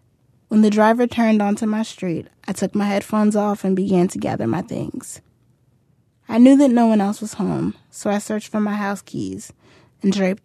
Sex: female